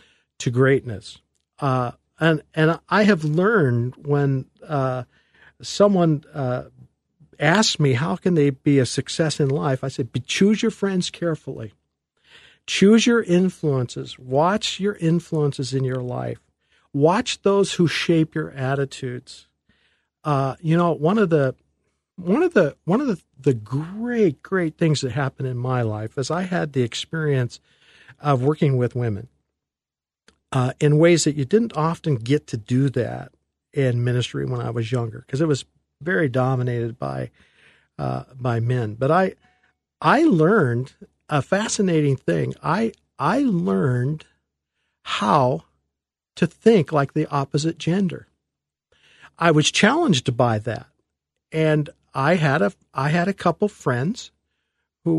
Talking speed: 140 wpm